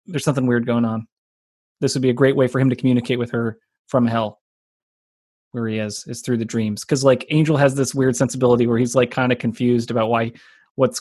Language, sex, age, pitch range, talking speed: English, male, 30-49, 120-165 Hz, 230 wpm